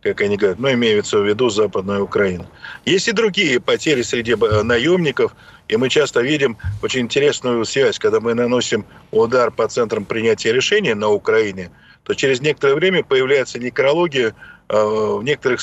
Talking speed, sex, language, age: 155 wpm, male, Russian, 50-69